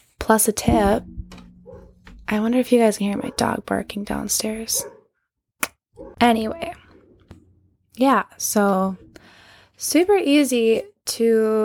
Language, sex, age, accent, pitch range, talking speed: English, female, 10-29, American, 200-235 Hz, 105 wpm